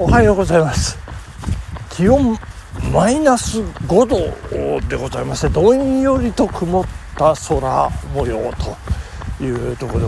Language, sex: Japanese, male